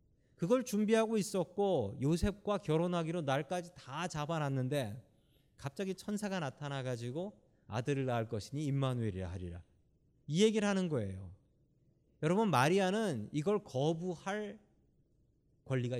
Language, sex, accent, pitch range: Korean, male, native, 125-190 Hz